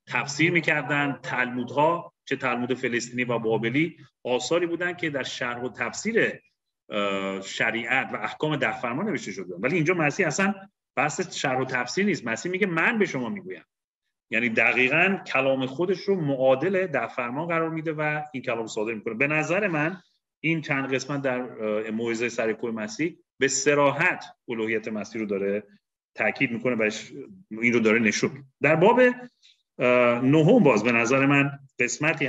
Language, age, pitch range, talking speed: Persian, 30-49, 120-155 Hz, 155 wpm